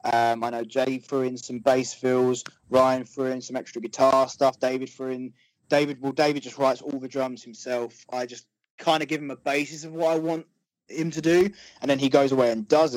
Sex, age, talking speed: male, 20-39, 230 wpm